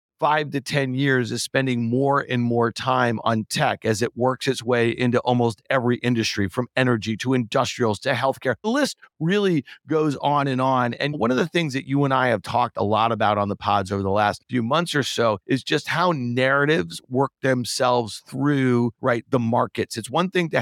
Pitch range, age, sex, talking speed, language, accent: 120-155 Hz, 40-59, male, 210 wpm, English, American